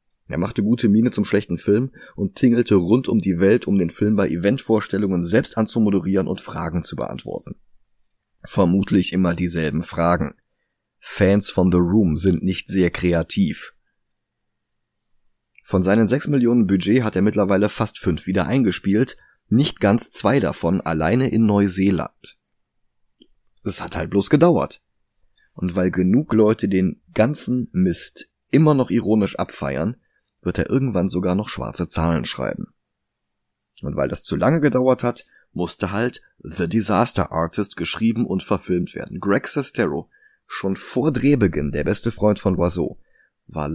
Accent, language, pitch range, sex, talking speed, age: German, German, 90-115 Hz, male, 145 wpm, 30-49